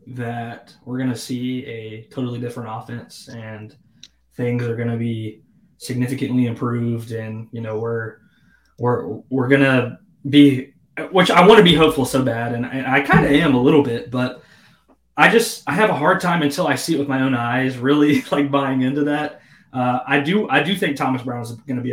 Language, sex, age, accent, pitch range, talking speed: English, male, 20-39, American, 120-145 Hz, 210 wpm